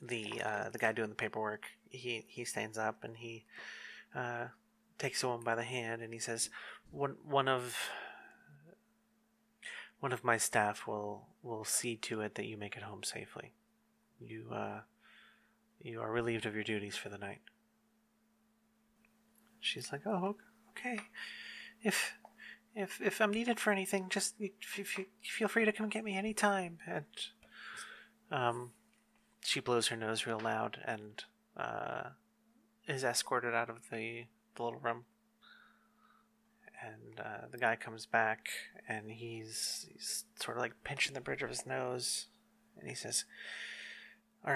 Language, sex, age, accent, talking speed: English, male, 30-49, American, 150 wpm